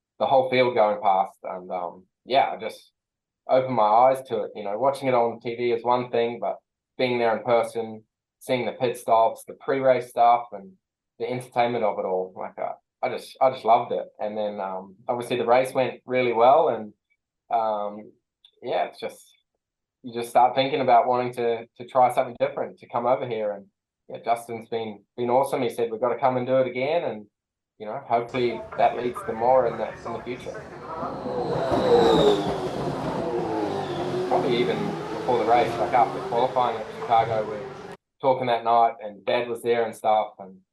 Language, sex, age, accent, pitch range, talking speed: English, male, 10-29, Australian, 110-125 Hz, 190 wpm